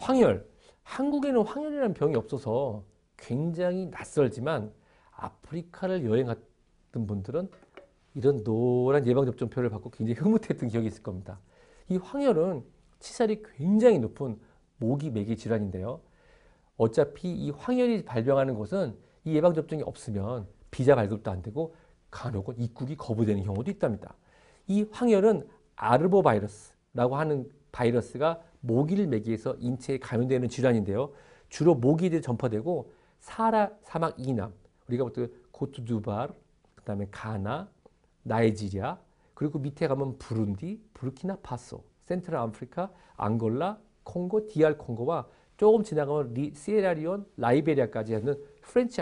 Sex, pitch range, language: male, 115-175 Hz, Korean